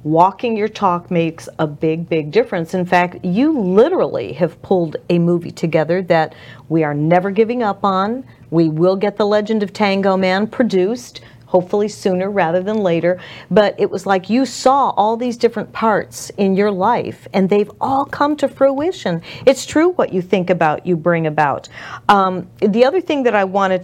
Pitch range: 165-215 Hz